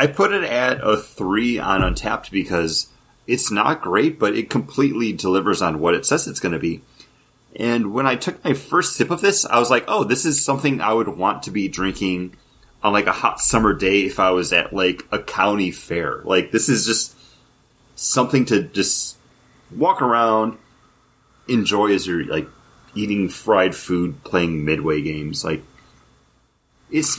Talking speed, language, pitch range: 180 wpm, English, 95-135 Hz